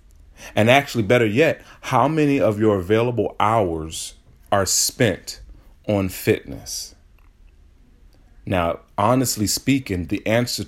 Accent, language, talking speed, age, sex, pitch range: American, English, 105 wpm, 40-59, male, 80-105 Hz